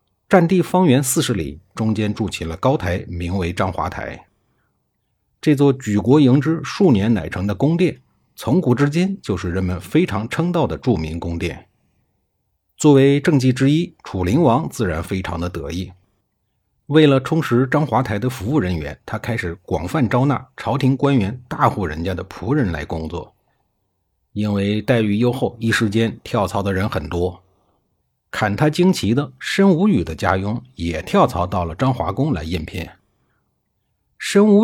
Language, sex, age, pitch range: Chinese, male, 50-69, 90-135 Hz